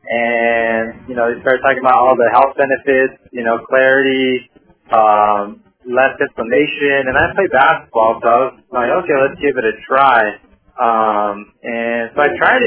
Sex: male